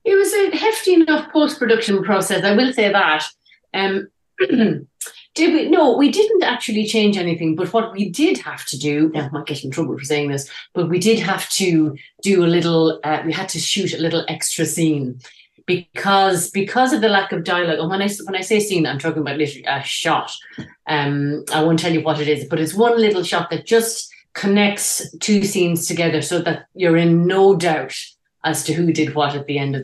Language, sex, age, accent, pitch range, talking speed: English, female, 30-49, Irish, 150-205 Hz, 215 wpm